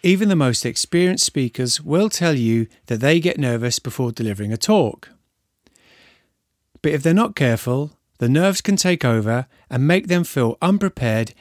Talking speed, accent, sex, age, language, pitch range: 165 wpm, British, male, 30-49, English, 115-175 Hz